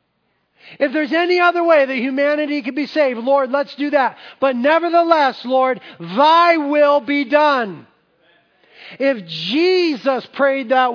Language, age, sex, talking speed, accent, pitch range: English, 40-59, male, 135 wpm, American, 190-275 Hz